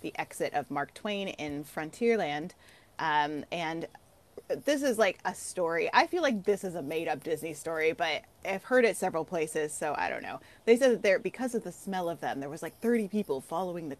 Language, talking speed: English, 215 wpm